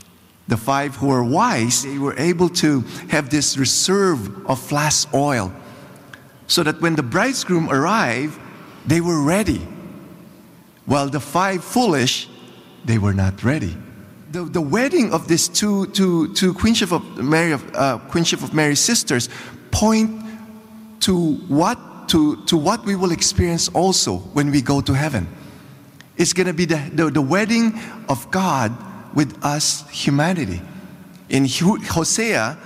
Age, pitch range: 50-69, 135-180 Hz